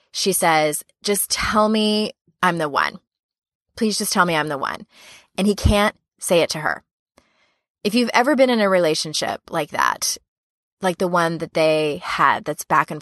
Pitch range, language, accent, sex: 170-215 Hz, English, American, female